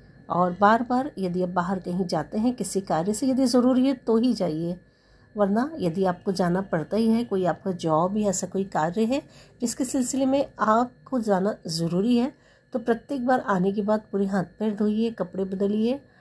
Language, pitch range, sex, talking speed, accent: Hindi, 180-245 Hz, female, 195 wpm, native